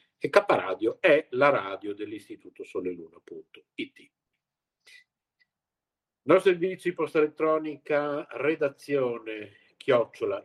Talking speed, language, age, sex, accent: 85 wpm, Italian, 50-69, male, native